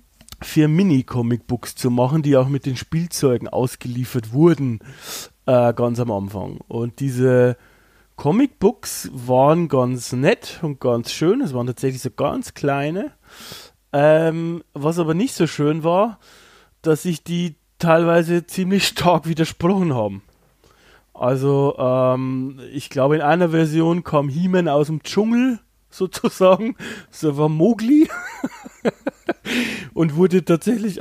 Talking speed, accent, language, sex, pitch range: 125 wpm, German, German, male, 135-170 Hz